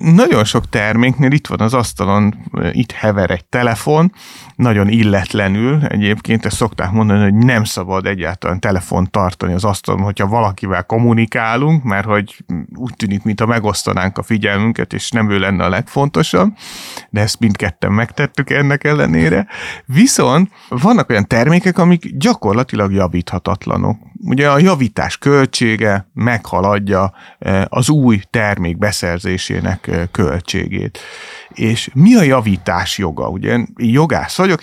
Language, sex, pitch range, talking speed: Hungarian, male, 100-135 Hz, 130 wpm